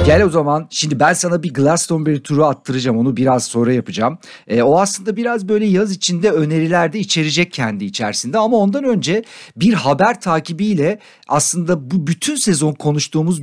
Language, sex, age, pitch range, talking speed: Turkish, male, 50-69, 135-205 Hz, 160 wpm